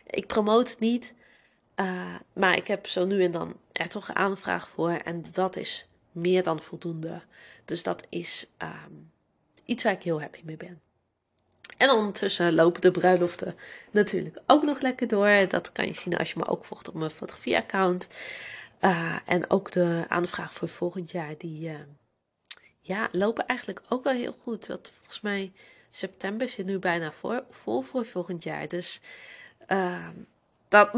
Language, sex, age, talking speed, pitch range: Dutch, female, 30-49, 170 wpm, 170-215 Hz